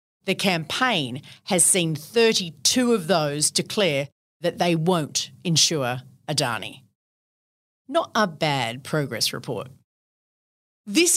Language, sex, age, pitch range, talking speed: English, female, 40-59, 170-255 Hz, 100 wpm